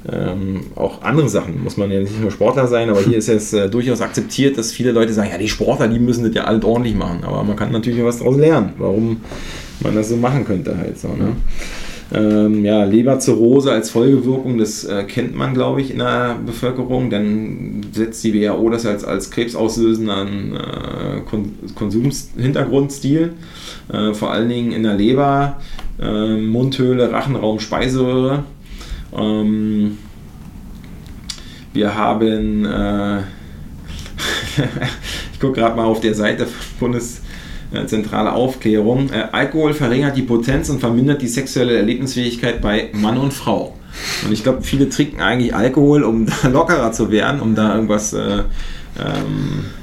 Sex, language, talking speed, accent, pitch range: male, German, 150 wpm, German, 105-130 Hz